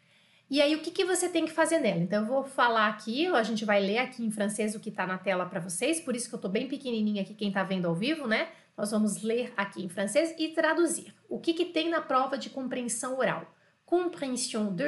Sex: female